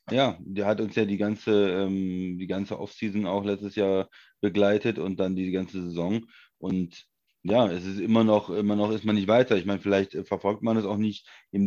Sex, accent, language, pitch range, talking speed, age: male, German, German, 100-115 Hz, 205 wpm, 30-49